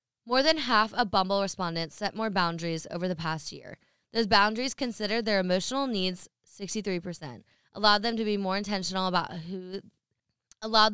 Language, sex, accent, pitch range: English, female, American, 170-220 Hz